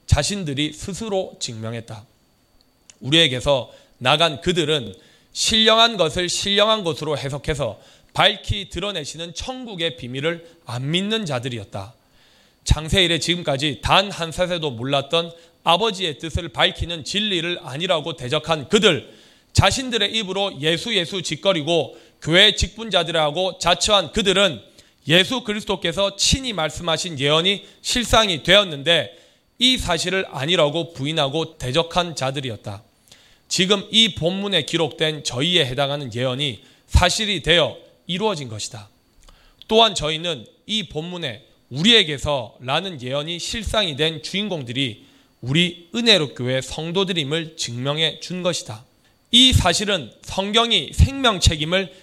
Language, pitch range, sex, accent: Korean, 145-195 Hz, male, native